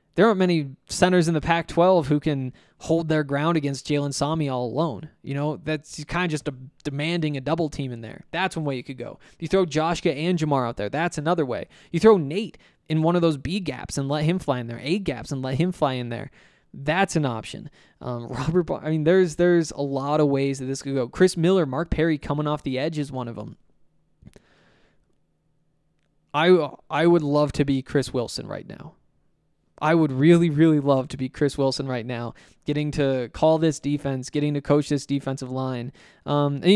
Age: 20-39